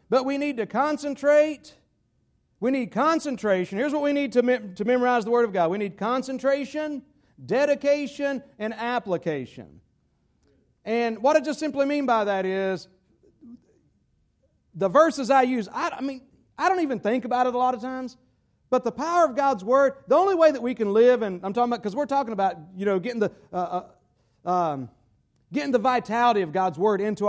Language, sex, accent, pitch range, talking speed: English, male, American, 190-265 Hz, 190 wpm